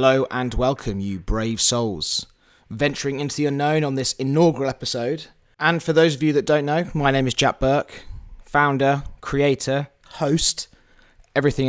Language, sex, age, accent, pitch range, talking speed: English, male, 20-39, British, 120-150 Hz, 160 wpm